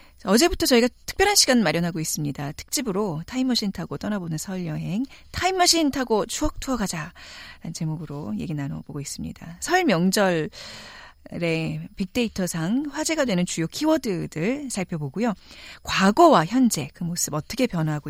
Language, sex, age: Korean, female, 40-59